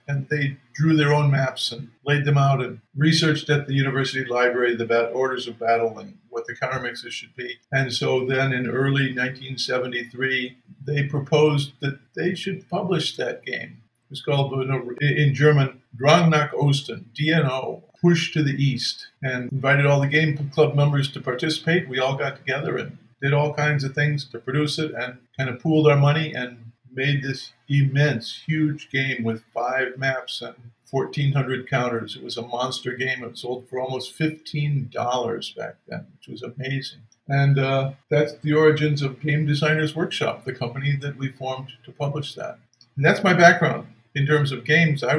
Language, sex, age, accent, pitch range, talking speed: English, male, 50-69, American, 130-150 Hz, 185 wpm